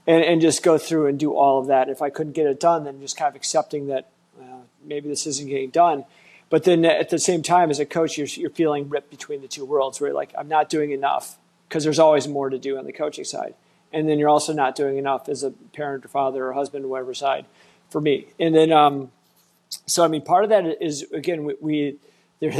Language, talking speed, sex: English, 255 wpm, male